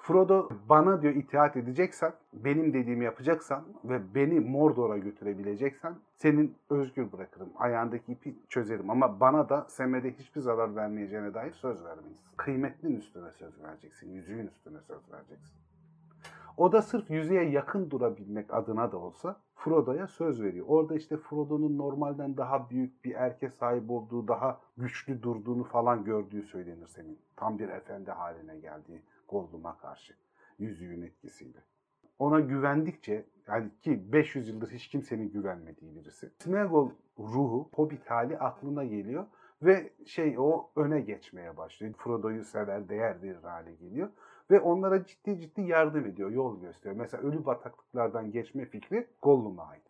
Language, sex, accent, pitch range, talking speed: Turkish, male, native, 115-155 Hz, 140 wpm